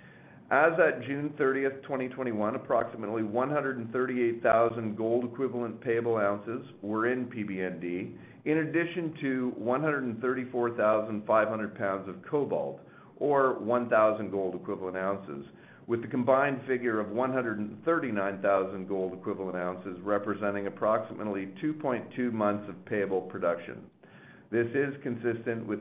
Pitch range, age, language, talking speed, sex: 100-125 Hz, 50-69, English, 100 wpm, male